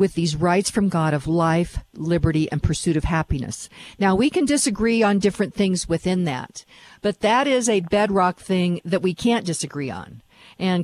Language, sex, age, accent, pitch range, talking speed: English, female, 50-69, American, 170-215 Hz, 185 wpm